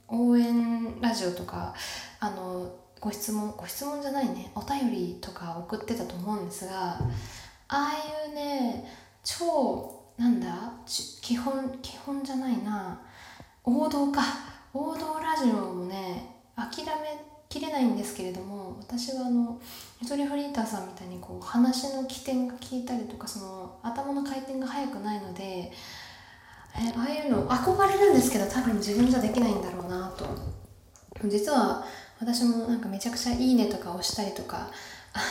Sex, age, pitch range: female, 20-39, 200-260 Hz